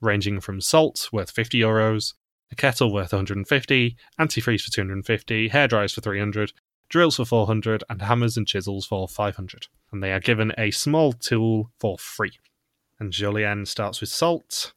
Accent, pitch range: British, 105-130 Hz